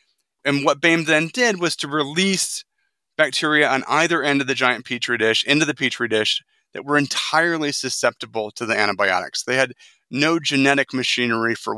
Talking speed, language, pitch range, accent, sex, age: 175 wpm, English, 120-155 Hz, American, male, 30-49